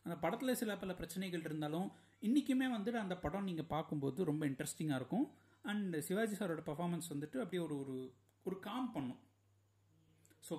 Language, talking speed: Tamil, 145 wpm